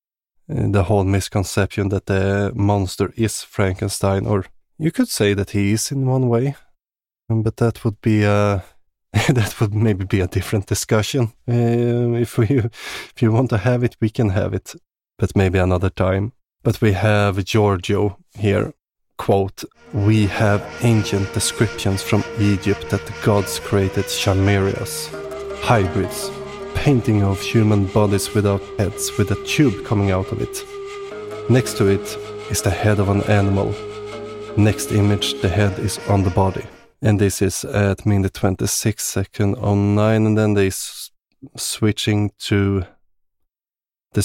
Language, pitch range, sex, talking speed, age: English, 100-115 Hz, male, 150 wpm, 20-39